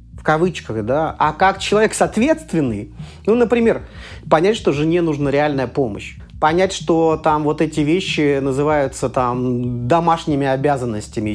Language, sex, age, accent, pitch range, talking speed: Russian, male, 30-49, native, 130-175 Hz, 130 wpm